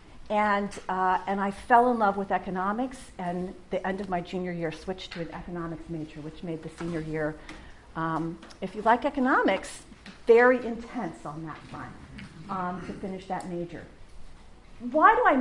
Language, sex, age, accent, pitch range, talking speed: English, female, 50-69, American, 170-225 Hz, 170 wpm